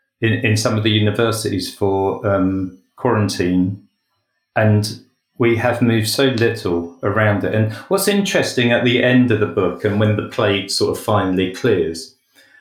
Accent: British